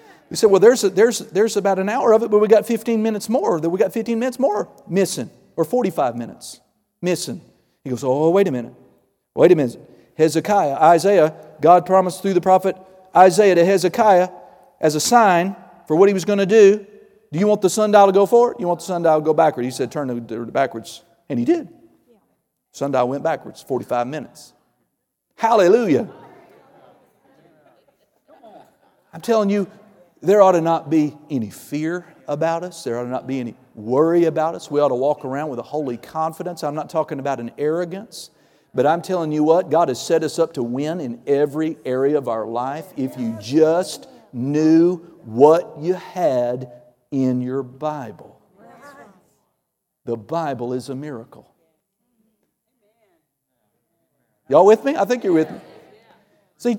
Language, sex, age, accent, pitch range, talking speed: English, male, 50-69, American, 145-200 Hz, 180 wpm